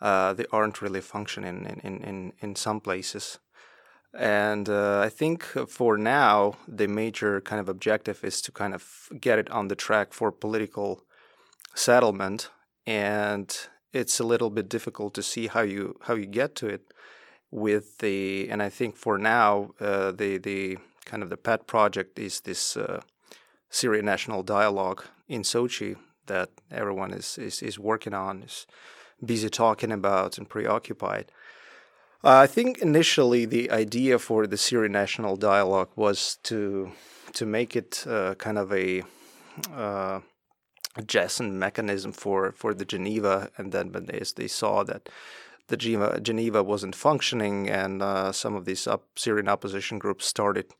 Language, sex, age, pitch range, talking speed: English, male, 30-49, 100-115 Hz, 160 wpm